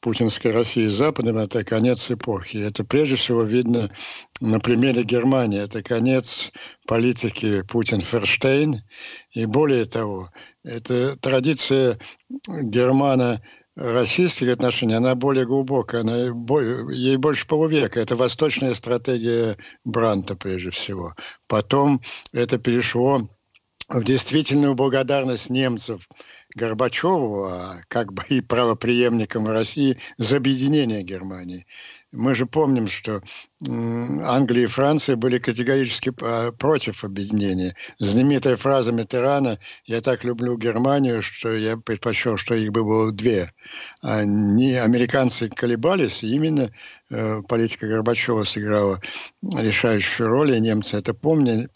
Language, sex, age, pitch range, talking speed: Ukrainian, male, 60-79, 110-130 Hz, 110 wpm